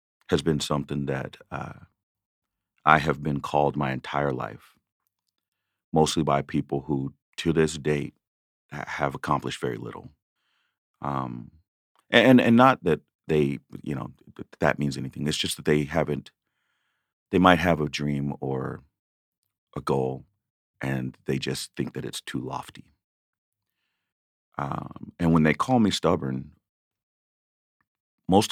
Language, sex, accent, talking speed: English, male, American, 135 wpm